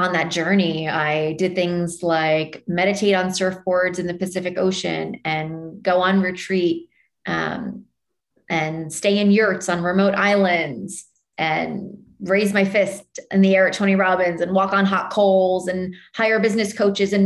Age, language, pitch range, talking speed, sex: 30-49, English, 175-200 Hz, 160 wpm, female